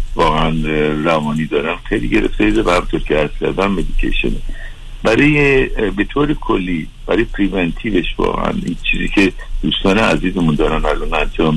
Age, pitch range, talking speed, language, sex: 60-79, 80-105 Hz, 135 wpm, Persian, male